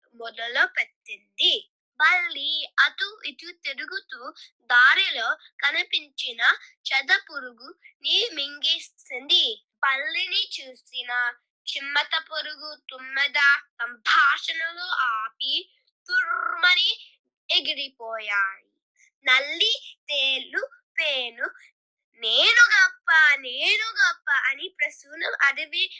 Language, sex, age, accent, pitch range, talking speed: Telugu, female, 20-39, native, 280-390 Hz, 45 wpm